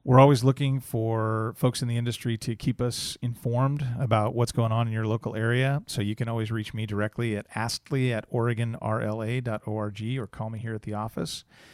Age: 40-59